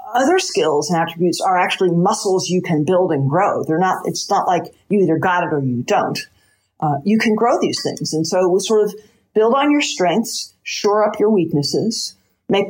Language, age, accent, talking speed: English, 50-69, American, 210 wpm